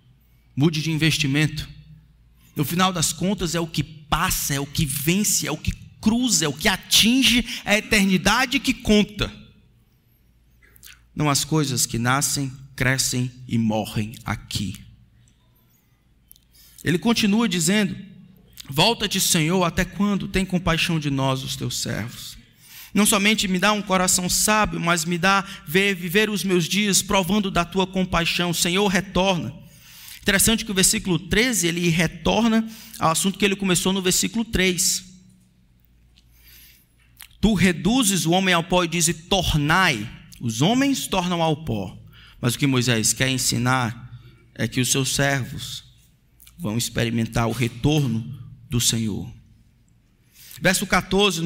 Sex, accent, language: male, Brazilian, Portuguese